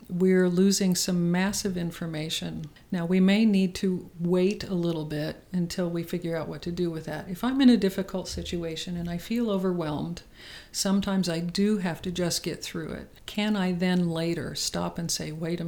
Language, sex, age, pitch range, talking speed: English, female, 50-69, 170-195 Hz, 195 wpm